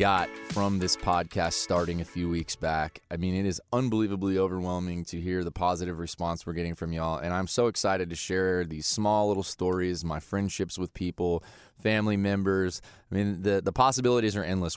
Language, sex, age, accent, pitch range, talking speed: English, male, 20-39, American, 85-100 Hz, 190 wpm